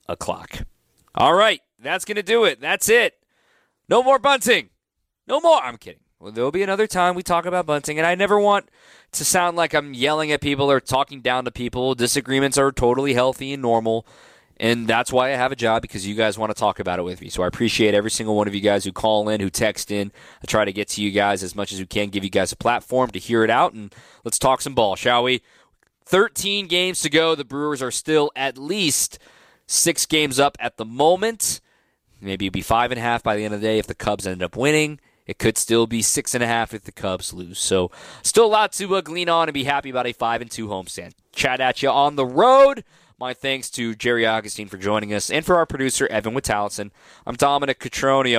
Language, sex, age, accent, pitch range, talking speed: English, male, 20-39, American, 110-150 Hz, 235 wpm